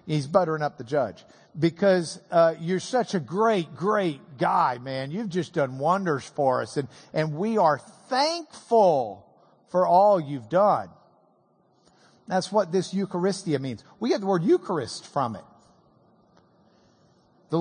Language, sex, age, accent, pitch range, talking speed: English, male, 50-69, American, 165-220 Hz, 145 wpm